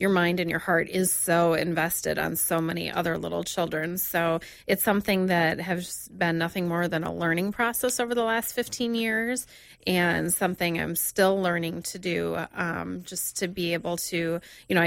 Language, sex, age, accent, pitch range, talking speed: English, female, 30-49, American, 165-185 Hz, 185 wpm